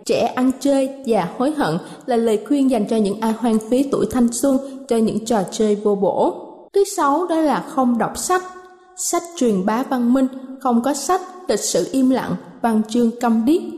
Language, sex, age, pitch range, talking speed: Vietnamese, female, 20-39, 230-300 Hz, 205 wpm